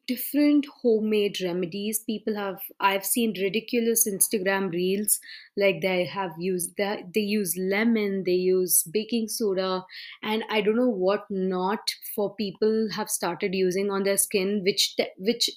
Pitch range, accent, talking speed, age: 190-230 Hz, Indian, 145 wpm, 20-39